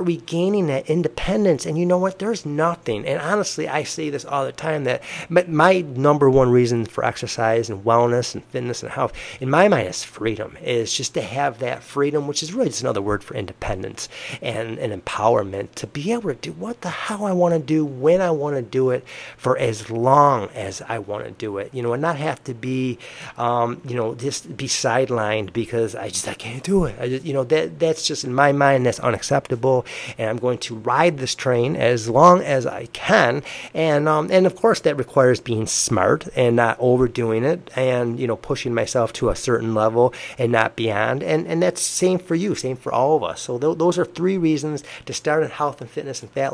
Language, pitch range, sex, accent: English, 120-155 Hz, male, American